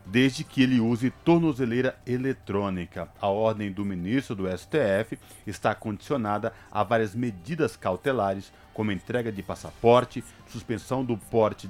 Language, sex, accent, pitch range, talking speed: Portuguese, male, Brazilian, 105-130 Hz, 130 wpm